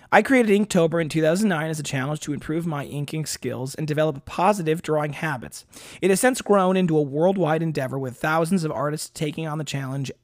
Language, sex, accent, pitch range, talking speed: English, male, American, 150-185 Hz, 200 wpm